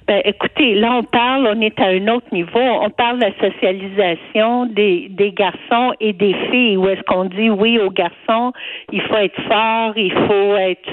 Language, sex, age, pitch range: French, female, 60-79, 200-250 Hz